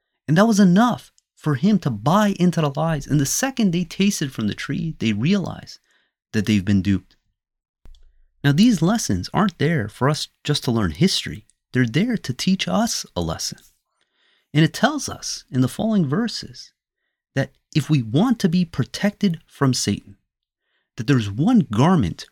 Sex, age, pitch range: male, 30-49, 120-180 Hz